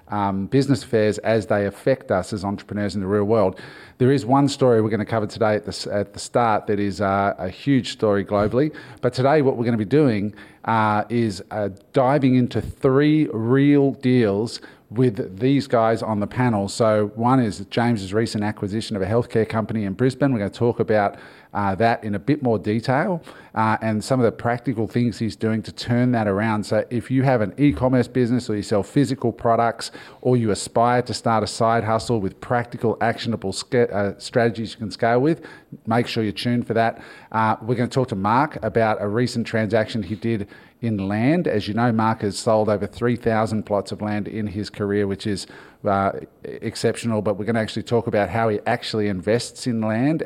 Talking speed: 210 wpm